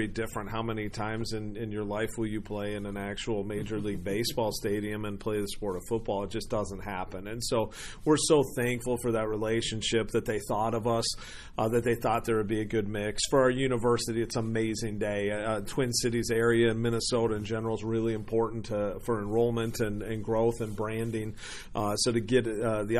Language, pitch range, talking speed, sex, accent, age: English, 110-125 Hz, 215 wpm, male, American, 40-59